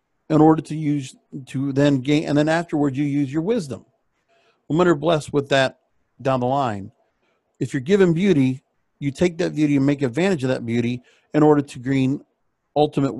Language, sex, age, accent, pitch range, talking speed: English, male, 50-69, American, 120-160 Hz, 185 wpm